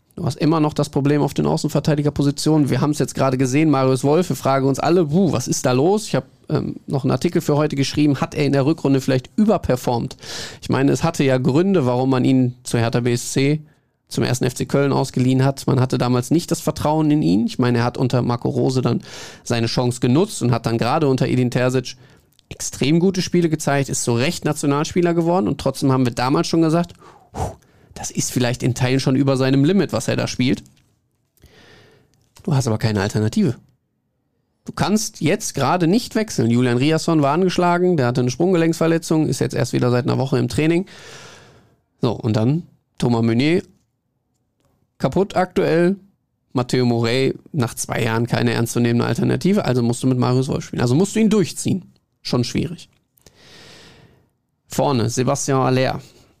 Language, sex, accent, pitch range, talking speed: German, male, German, 125-160 Hz, 185 wpm